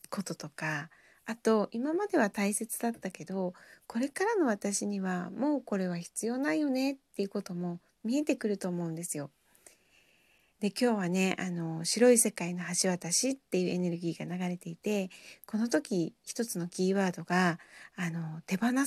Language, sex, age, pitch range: Japanese, female, 40-59, 175-235 Hz